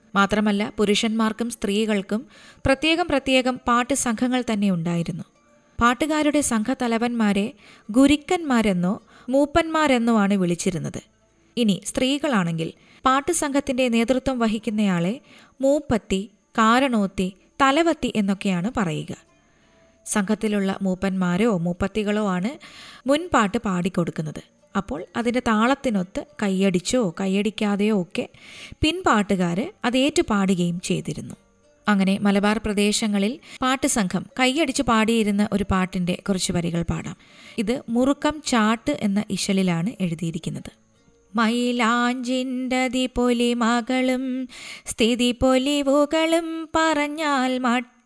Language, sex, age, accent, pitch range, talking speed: Malayalam, female, 20-39, native, 200-260 Hz, 75 wpm